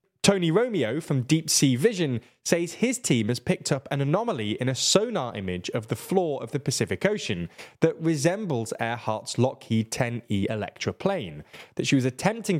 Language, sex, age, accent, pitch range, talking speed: English, male, 10-29, British, 120-185 Hz, 170 wpm